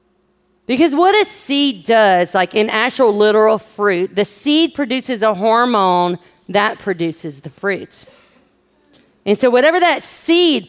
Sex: female